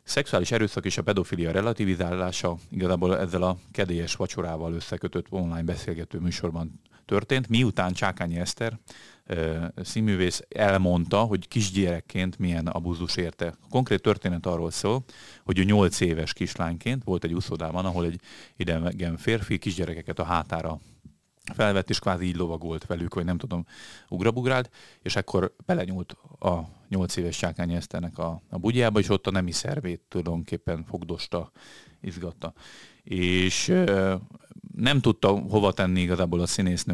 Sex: male